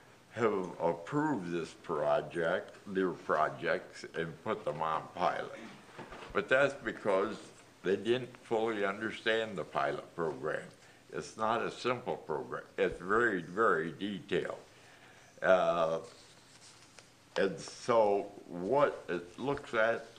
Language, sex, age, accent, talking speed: English, male, 60-79, American, 110 wpm